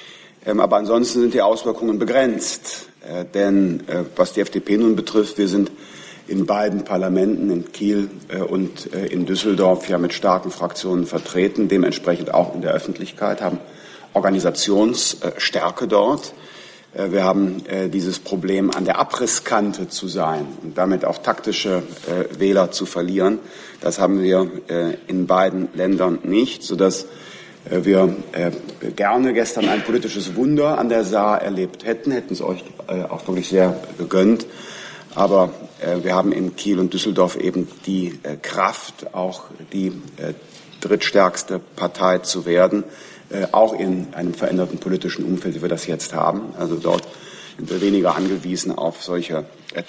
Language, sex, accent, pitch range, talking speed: German, male, German, 90-105 Hz, 145 wpm